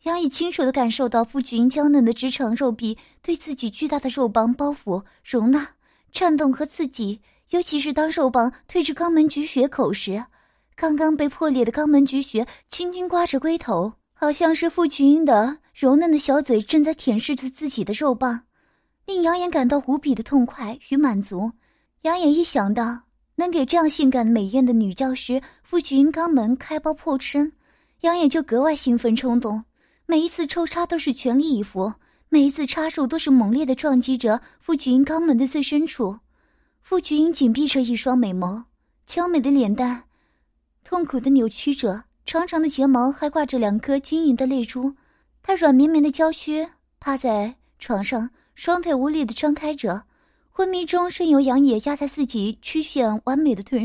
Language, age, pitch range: Chinese, 20-39, 245-310 Hz